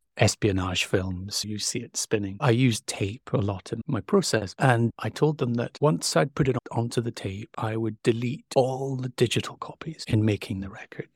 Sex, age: male, 40-59